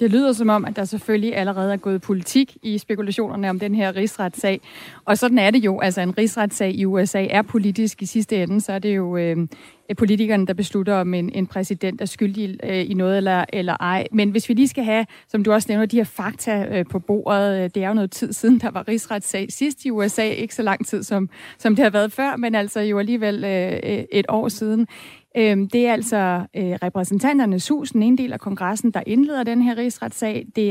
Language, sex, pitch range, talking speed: Danish, female, 200-240 Hz, 225 wpm